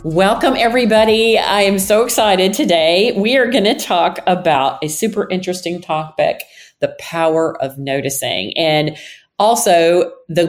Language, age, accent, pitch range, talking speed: English, 40-59, American, 155-195 Hz, 135 wpm